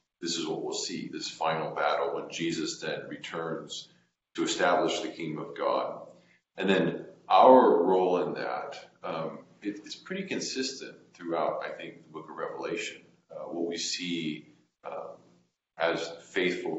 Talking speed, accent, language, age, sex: 150 wpm, American, English, 40-59, male